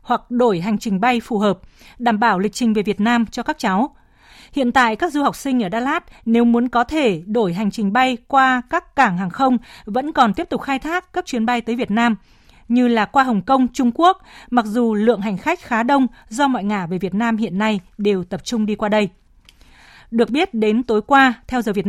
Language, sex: Vietnamese, female